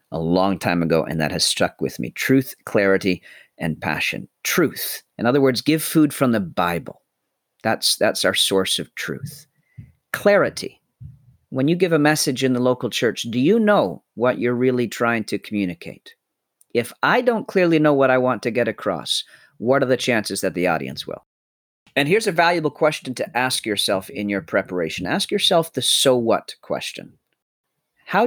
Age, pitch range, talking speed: 40-59, 100-145 Hz, 180 wpm